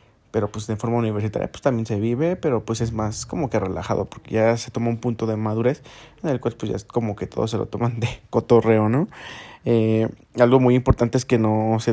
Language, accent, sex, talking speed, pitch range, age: Spanish, Mexican, male, 235 wpm, 110-125 Hz, 30-49